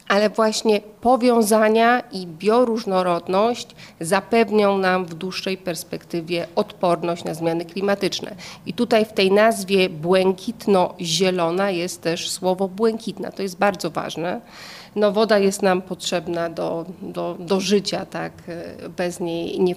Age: 40-59